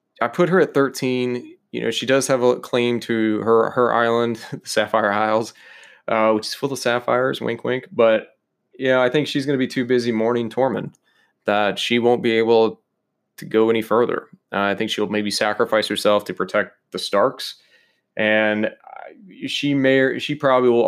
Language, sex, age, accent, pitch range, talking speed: English, male, 20-39, American, 110-125 Hz, 185 wpm